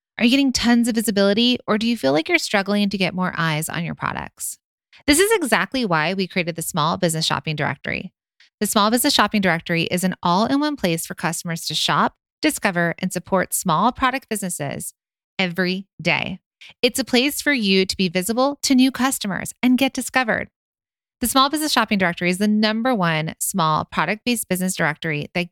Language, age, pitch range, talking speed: English, 30-49, 175-240 Hz, 190 wpm